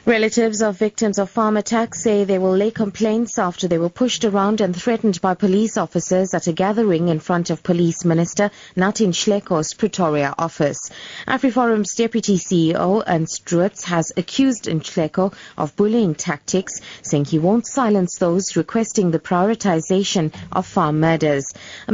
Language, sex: English, female